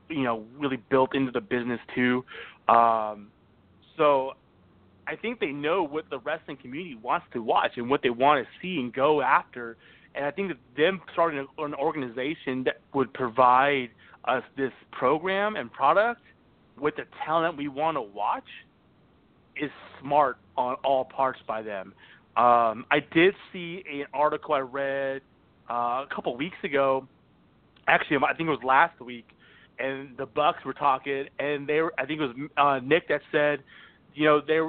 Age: 30-49